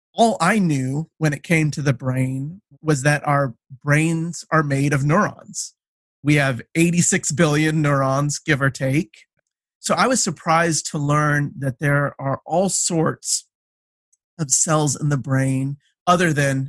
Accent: American